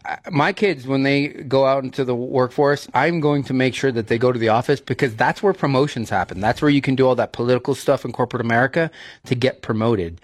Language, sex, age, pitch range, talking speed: English, male, 30-49, 110-130 Hz, 235 wpm